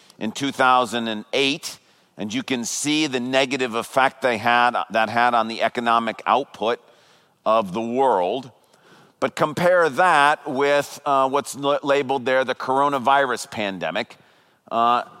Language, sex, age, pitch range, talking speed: English, male, 40-59, 120-145 Hz, 125 wpm